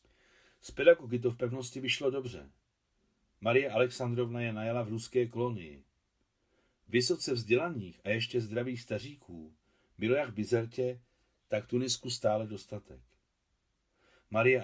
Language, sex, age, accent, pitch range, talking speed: Czech, male, 40-59, native, 95-125 Hz, 120 wpm